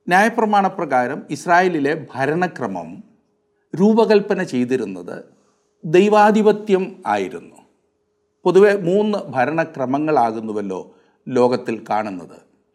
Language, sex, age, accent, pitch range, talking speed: Malayalam, male, 50-69, native, 145-210 Hz, 60 wpm